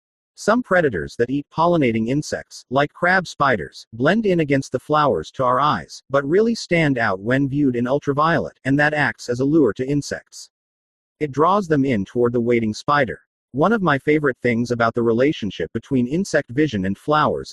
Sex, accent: male, American